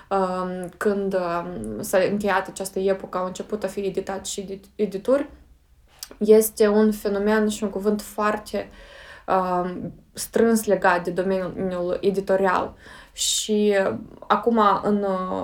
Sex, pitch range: female, 185-210 Hz